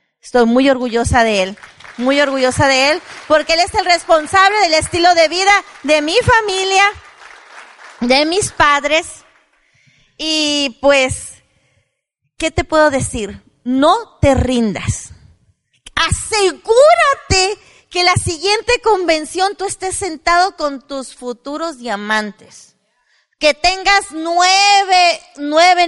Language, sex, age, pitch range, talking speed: Spanish, female, 40-59, 245-340 Hz, 115 wpm